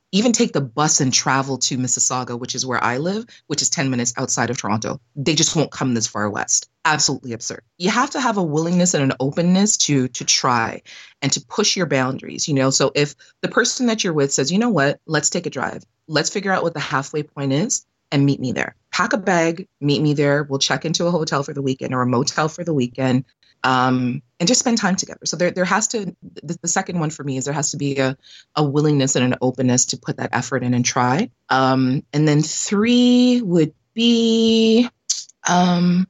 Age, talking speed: 30-49, 230 wpm